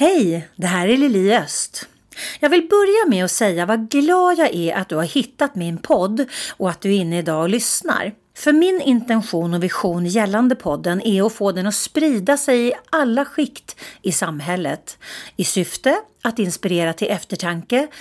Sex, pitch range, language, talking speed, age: female, 175-275 Hz, Swedish, 185 wpm, 40-59